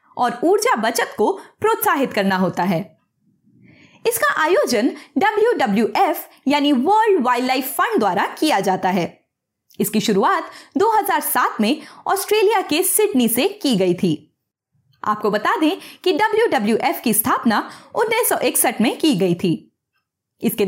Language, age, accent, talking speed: Hindi, 20-39, native, 125 wpm